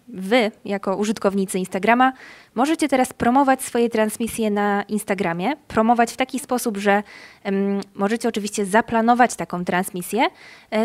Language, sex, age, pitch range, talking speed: Polish, female, 20-39, 200-240 Hz, 125 wpm